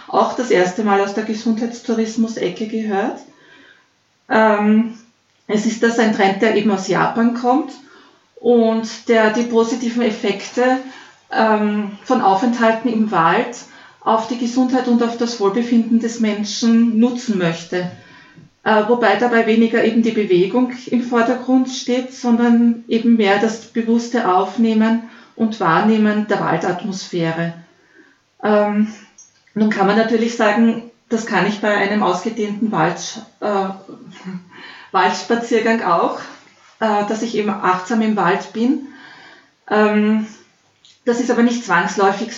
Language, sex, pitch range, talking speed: German, female, 205-235 Hz, 125 wpm